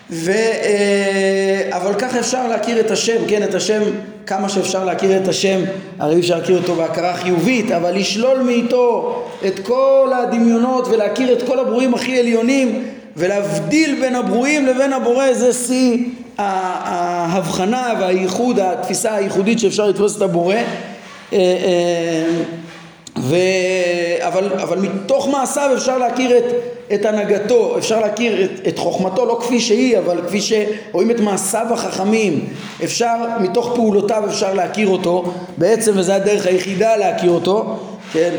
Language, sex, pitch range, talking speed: Hebrew, male, 185-235 Hz, 135 wpm